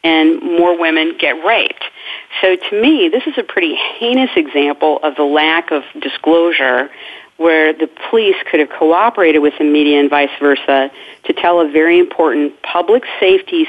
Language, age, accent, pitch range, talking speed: English, 40-59, American, 155-250 Hz, 165 wpm